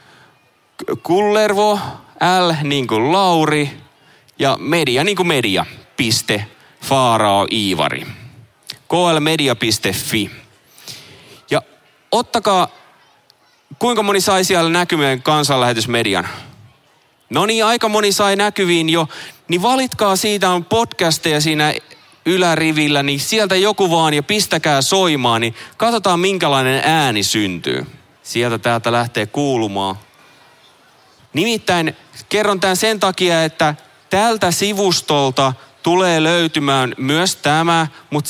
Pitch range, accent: 135-180 Hz, native